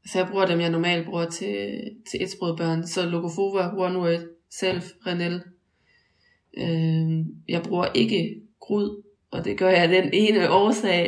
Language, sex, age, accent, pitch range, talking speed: Danish, female, 20-39, native, 165-185 Hz, 155 wpm